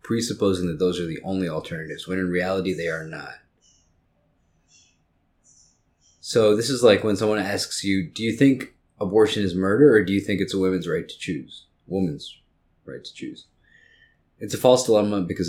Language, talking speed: English, 180 wpm